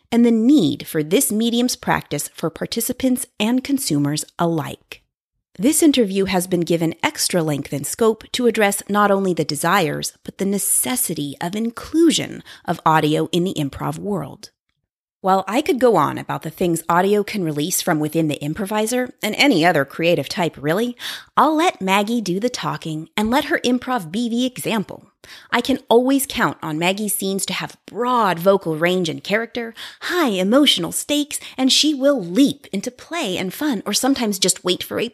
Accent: American